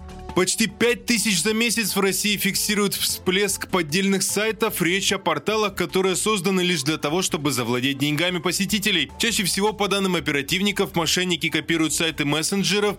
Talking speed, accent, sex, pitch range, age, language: 145 wpm, native, male, 160-200 Hz, 20-39, Russian